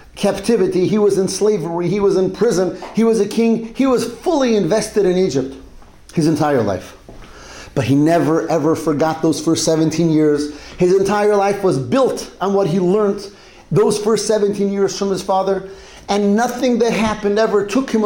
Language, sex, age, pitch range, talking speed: English, male, 40-59, 170-215 Hz, 180 wpm